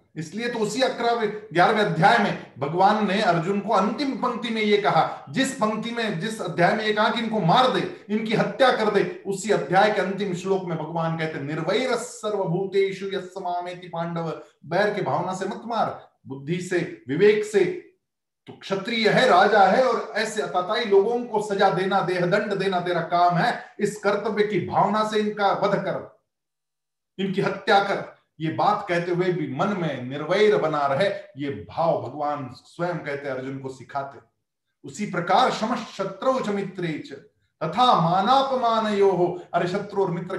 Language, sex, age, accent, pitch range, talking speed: Hindi, male, 40-59, native, 160-215 Hz, 140 wpm